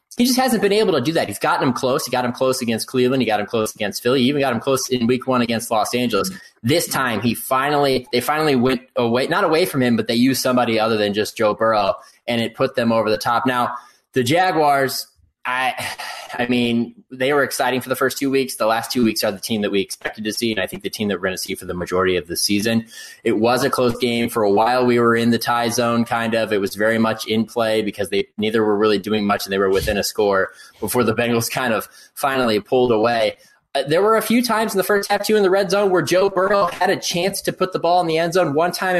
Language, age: English, 20-39